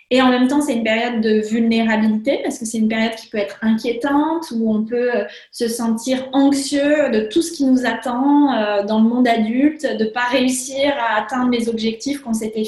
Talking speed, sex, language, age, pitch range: 210 wpm, female, French, 20-39, 225-280 Hz